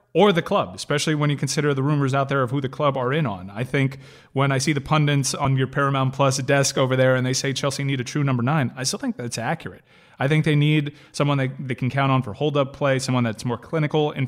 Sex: male